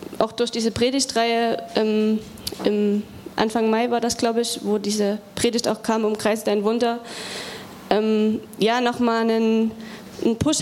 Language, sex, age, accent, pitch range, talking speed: German, female, 20-39, German, 220-245 Hz, 160 wpm